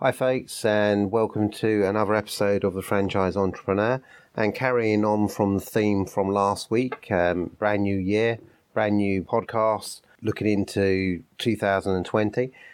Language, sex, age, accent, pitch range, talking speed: English, male, 30-49, British, 95-120 Hz, 140 wpm